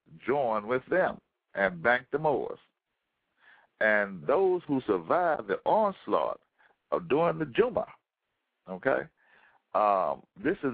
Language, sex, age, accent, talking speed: English, male, 60-79, American, 115 wpm